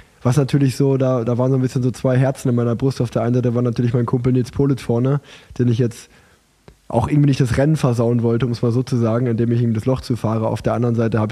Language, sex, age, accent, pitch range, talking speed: German, male, 20-39, German, 115-130 Hz, 280 wpm